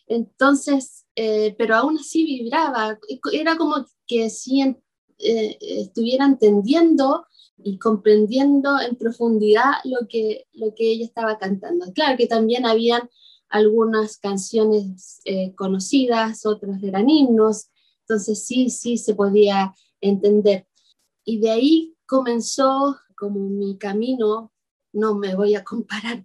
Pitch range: 205-245 Hz